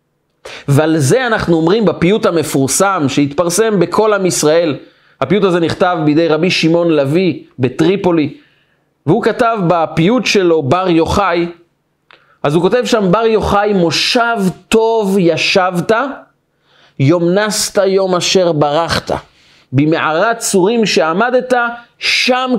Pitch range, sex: 155-205 Hz, male